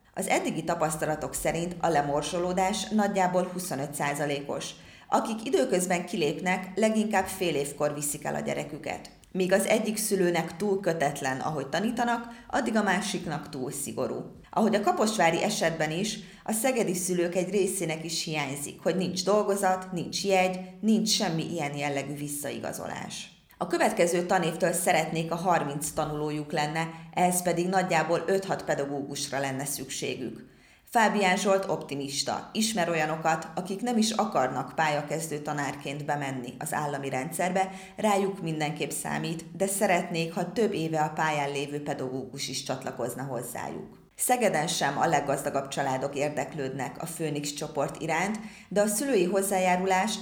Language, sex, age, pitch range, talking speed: Hungarian, female, 30-49, 150-190 Hz, 135 wpm